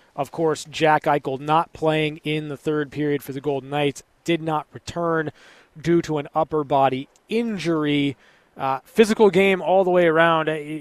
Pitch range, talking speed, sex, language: 150-180 Hz, 165 wpm, male, English